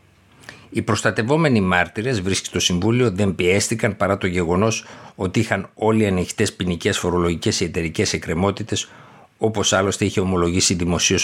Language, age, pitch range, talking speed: Greek, 60-79, 90-105 Hz, 135 wpm